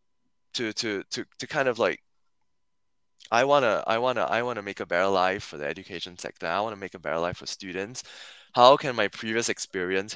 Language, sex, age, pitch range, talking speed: English, male, 20-39, 90-110 Hz, 195 wpm